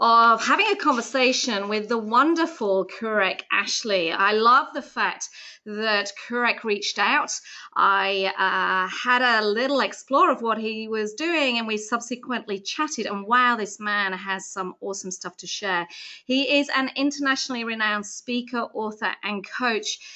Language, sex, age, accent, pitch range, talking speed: English, female, 30-49, British, 205-265 Hz, 150 wpm